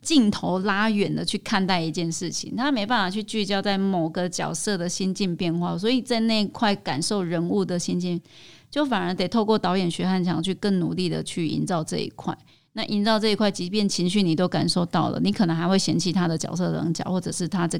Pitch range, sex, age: 175-210 Hz, female, 30-49